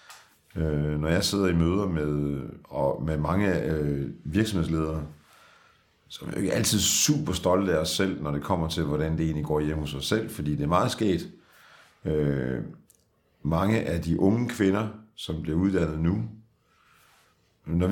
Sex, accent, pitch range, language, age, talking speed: male, native, 80-100 Hz, Danish, 50-69, 170 wpm